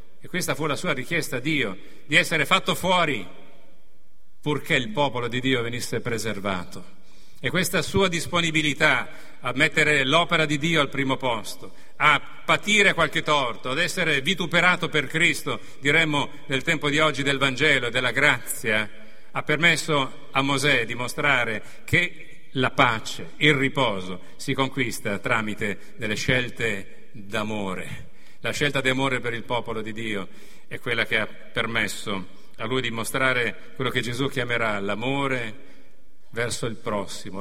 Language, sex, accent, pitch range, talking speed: Italian, male, native, 115-150 Hz, 150 wpm